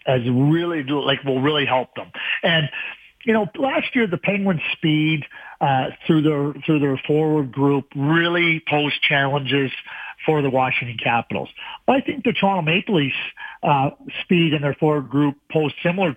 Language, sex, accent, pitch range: English, male, American, 145-175 Hz